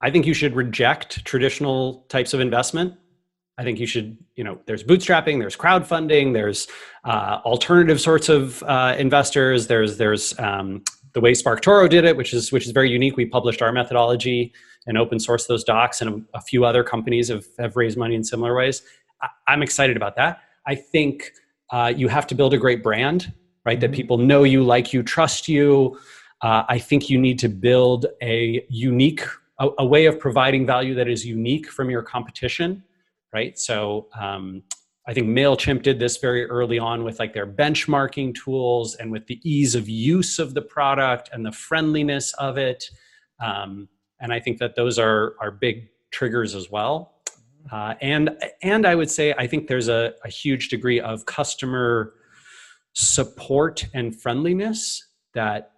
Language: English